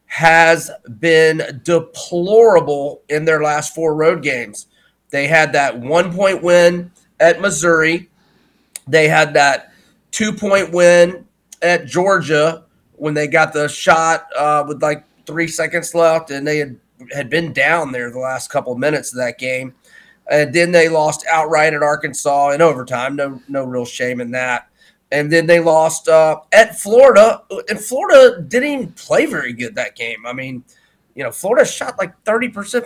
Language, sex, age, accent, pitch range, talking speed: English, male, 30-49, American, 145-175 Hz, 160 wpm